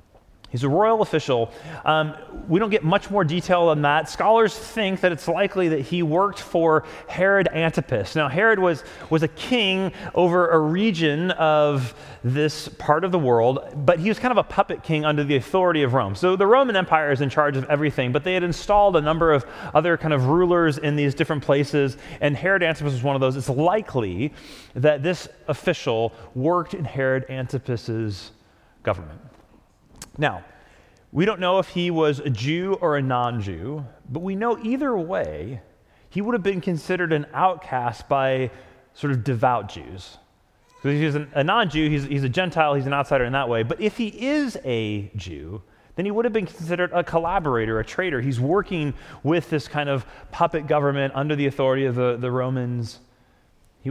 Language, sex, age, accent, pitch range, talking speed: English, male, 30-49, American, 125-175 Hz, 190 wpm